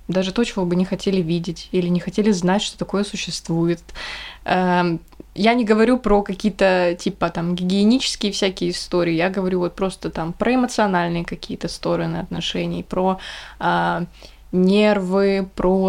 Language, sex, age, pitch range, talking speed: Russian, female, 20-39, 180-210 Hz, 145 wpm